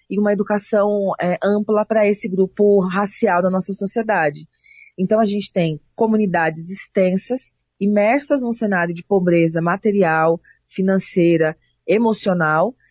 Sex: female